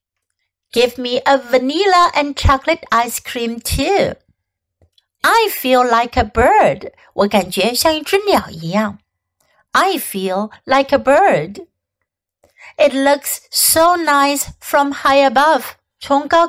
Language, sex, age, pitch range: Chinese, female, 60-79, 210-300 Hz